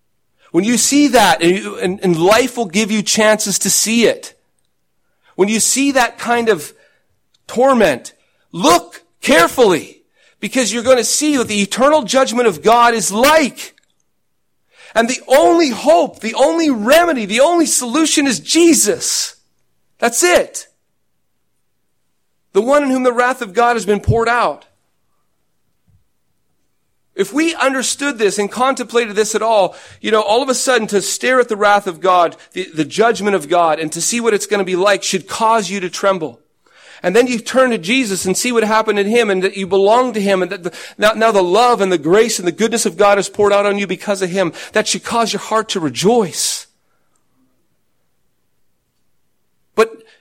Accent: American